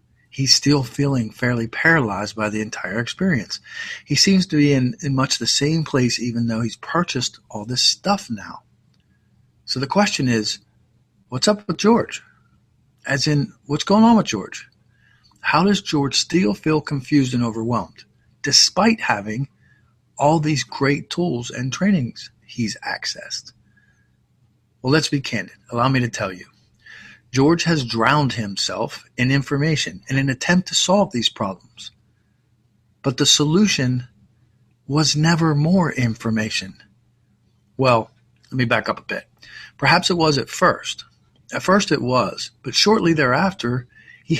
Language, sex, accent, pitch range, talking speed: English, male, American, 120-160 Hz, 145 wpm